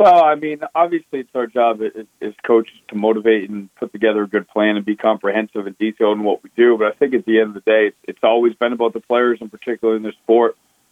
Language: English